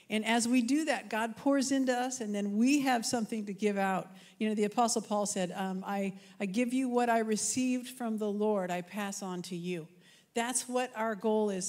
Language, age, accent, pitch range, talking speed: English, 50-69, American, 195-245 Hz, 225 wpm